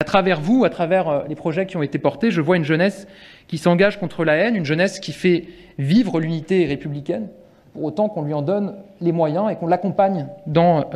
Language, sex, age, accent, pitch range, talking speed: French, male, 30-49, French, 160-195 Hz, 215 wpm